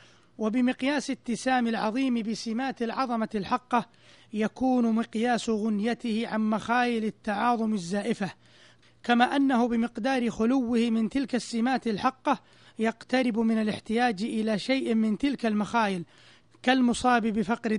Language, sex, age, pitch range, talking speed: Arabic, male, 30-49, 215-250 Hz, 105 wpm